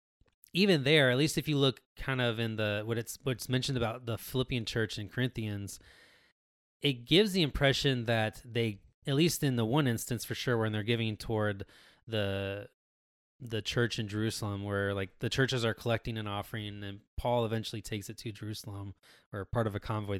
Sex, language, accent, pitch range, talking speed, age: male, English, American, 105-125 Hz, 190 wpm, 20-39